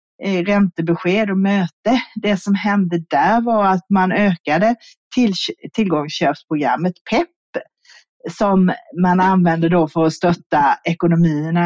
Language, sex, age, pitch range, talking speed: Swedish, female, 40-59, 165-210 Hz, 110 wpm